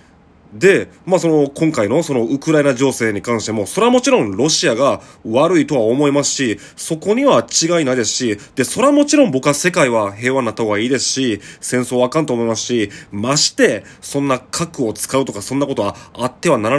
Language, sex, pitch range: Japanese, male, 120-190 Hz